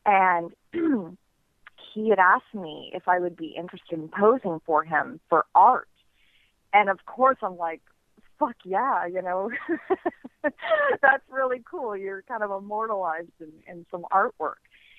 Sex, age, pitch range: female, 40-59, 185-235 Hz